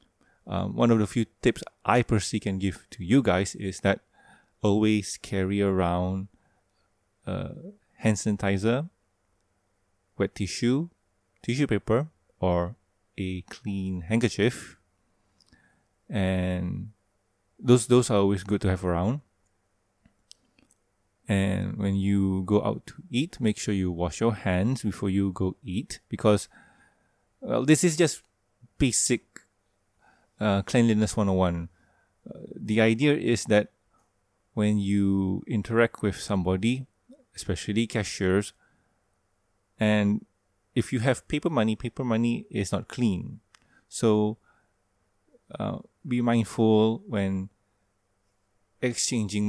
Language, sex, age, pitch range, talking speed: English, male, 20-39, 95-115 Hz, 115 wpm